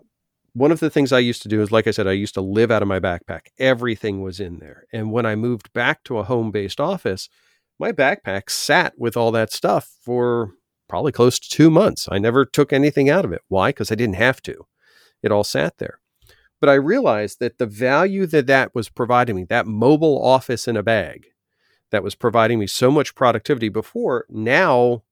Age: 40-59